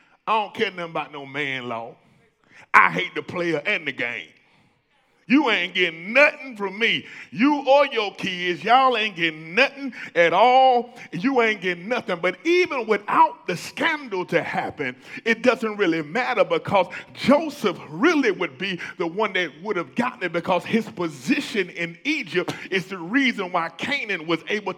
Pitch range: 180-255 Hz